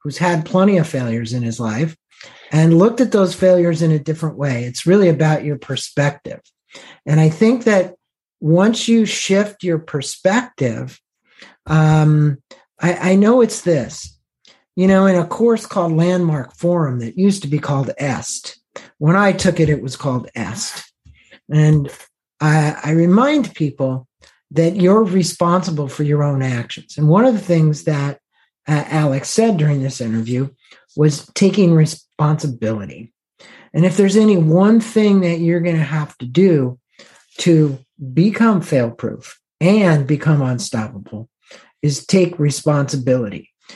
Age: 50-69